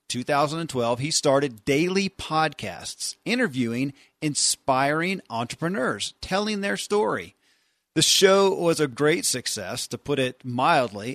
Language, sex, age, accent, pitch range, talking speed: English, male, 40-59, American, 120-165 Hz, 115 wpm